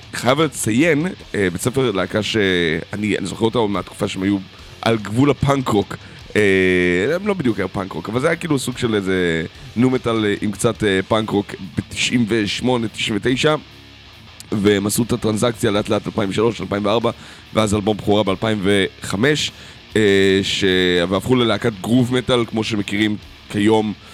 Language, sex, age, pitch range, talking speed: Hebrew, male, 30-49, 95-120 Hz, 145 wpm